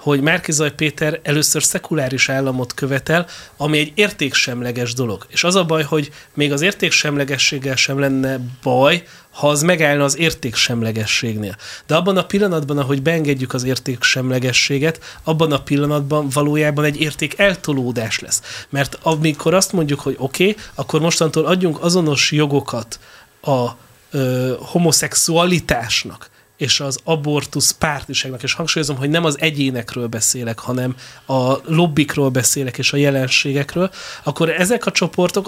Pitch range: 135-165 Hz